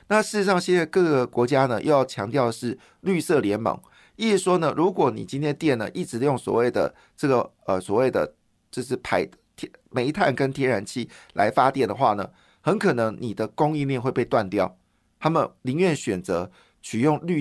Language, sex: Chinese, male